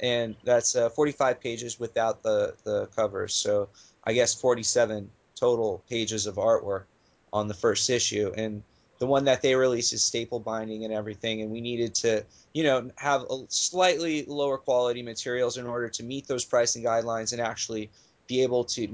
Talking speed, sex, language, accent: 175 wpm, male, English, American